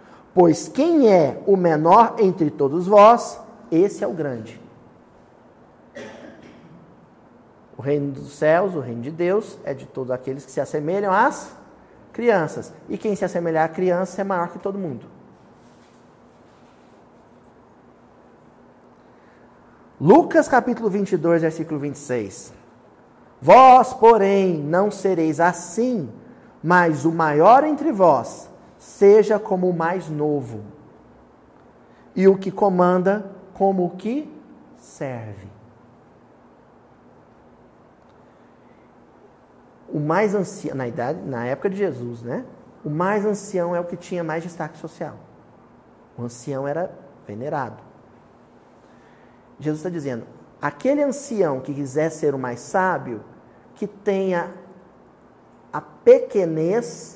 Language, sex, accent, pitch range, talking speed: Portuguese, male, Brazilian, 145-205 Hz, 110 wpm